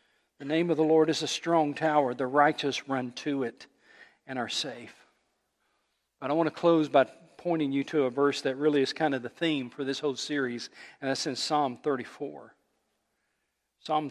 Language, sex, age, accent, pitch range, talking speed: English, male, 40-59, American, 140-175 Hz, 195 wpm